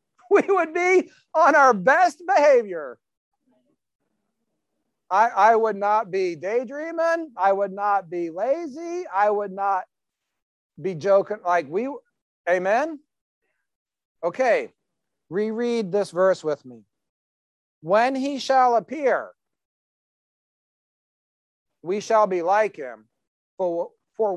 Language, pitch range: English, 145-205 Hz